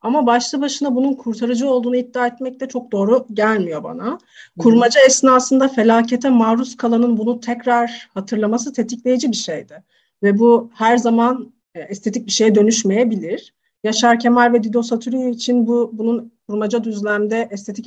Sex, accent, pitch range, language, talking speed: female, native, 215-245 Hz, Turkish, 145 wpm